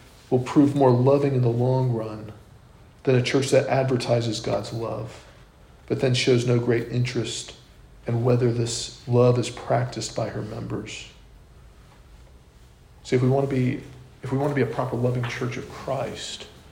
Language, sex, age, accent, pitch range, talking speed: English, male, 40-59, American, 115-130 Hz, 150 wpm